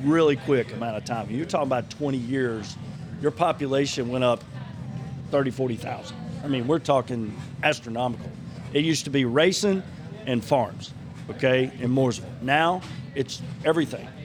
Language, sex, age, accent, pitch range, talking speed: English, male, 40-59, American, 125-150 Hz, 145 wpm